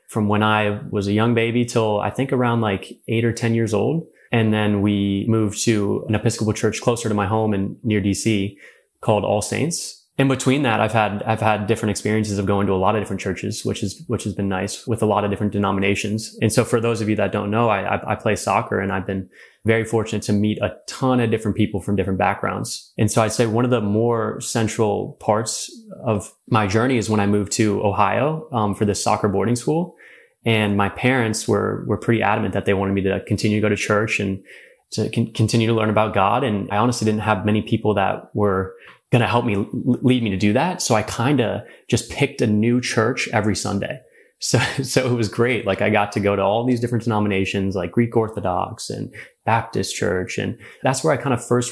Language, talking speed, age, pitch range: English, 230 wpm, 20-39, 100-115 Hz